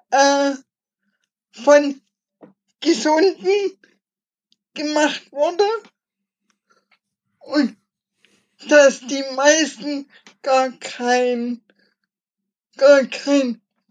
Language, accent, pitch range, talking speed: German, German, 220-295 Hz, 45 wpm